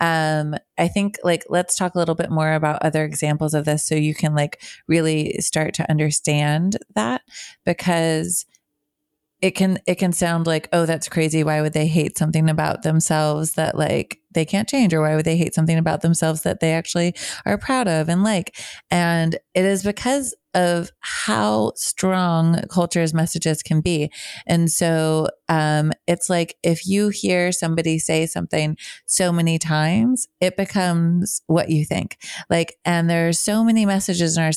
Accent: American